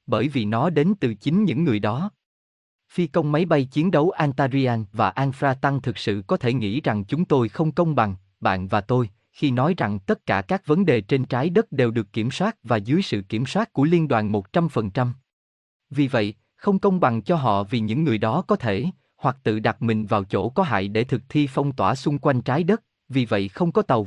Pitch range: 110-155 Hz